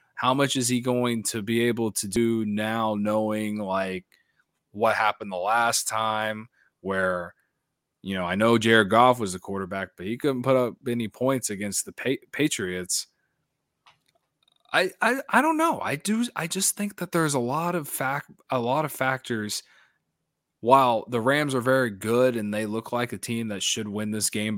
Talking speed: 185 wpm